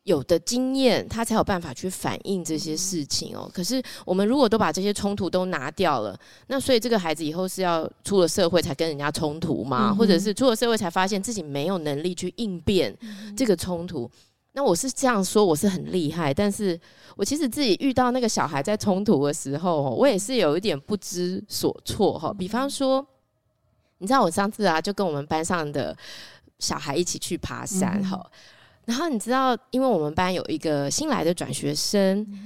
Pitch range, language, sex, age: 165-225 Hz, Chinese, female, 20-39